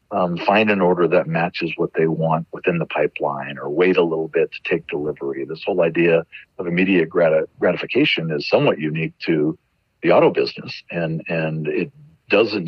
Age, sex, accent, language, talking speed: 50-69, male, American, English, 180 wpm